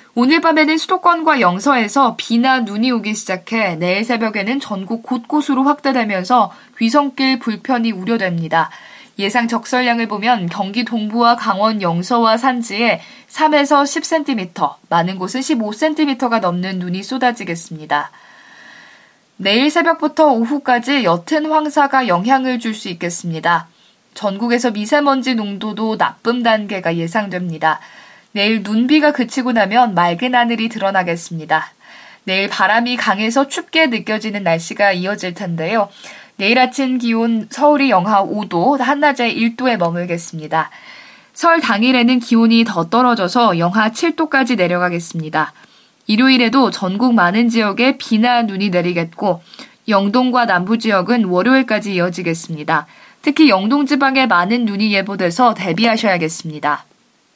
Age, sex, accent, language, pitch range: 20-39, female, native, Korean, 190-260 Hz